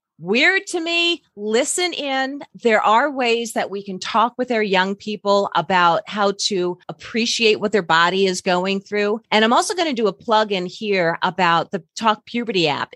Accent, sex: American, female